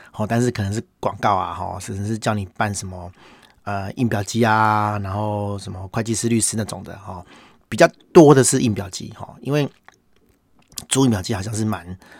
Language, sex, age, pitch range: Chinese, male, 30-49, 100-115 Hz